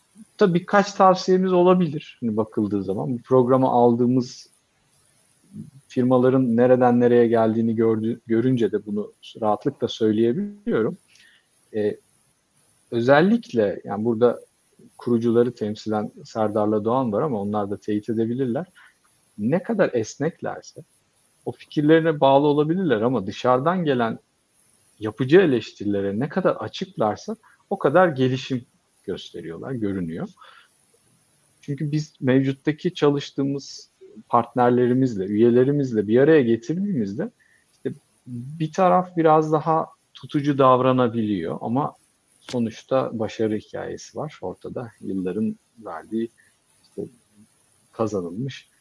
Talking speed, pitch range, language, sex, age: 95 wpm, 115-155 Hz, Turkish, male, 50-69